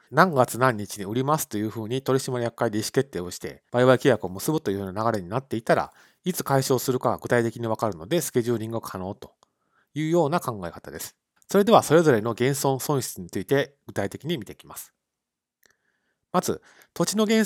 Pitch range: 110-155 Hz